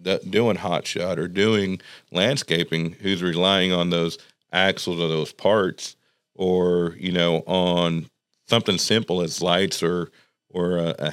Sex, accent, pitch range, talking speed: male, American, 85-95 Hz, 135 wpm